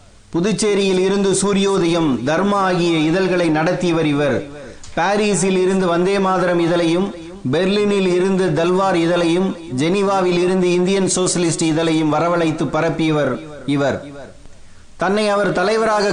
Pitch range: 170-195 Hz